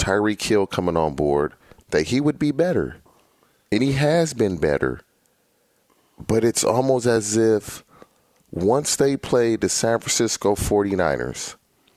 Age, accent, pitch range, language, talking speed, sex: 30-49, American, 100-130 Hz, English, 135 wpm, male